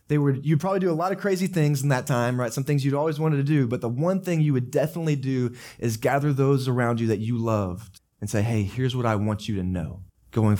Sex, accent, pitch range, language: male, American, 125-180 Hz, English